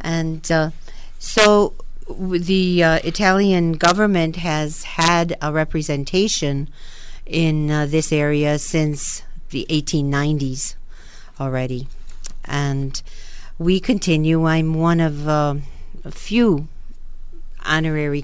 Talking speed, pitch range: 100 wpm, 140-160 Hz